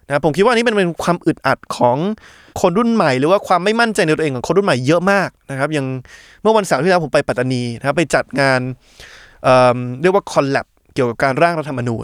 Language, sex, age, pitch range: Thai, male, 20-39, 135-185 Hz